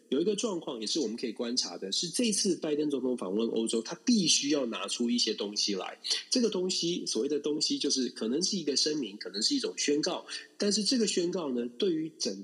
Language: Chinese